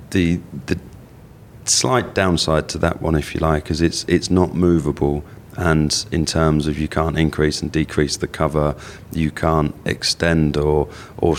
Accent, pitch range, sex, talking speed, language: British, 75-85 Hz, male, 165 wpm, English